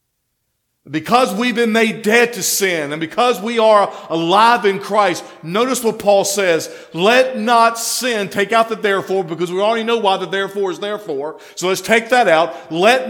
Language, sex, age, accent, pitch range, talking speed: English, male, 50-69, American, 180-225 Hz, 185 wpm